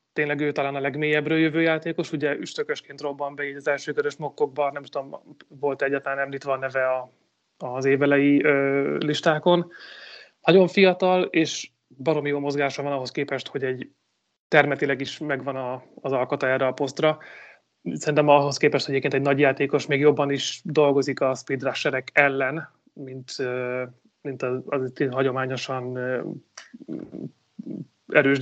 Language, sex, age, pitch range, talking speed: Hungarian, male, 30-49, 135-150 Hz, 130 wpm